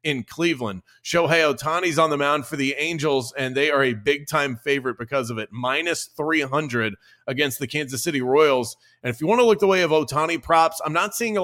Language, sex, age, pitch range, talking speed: English, male, 30-49, 125-150 Hz, 220 wpm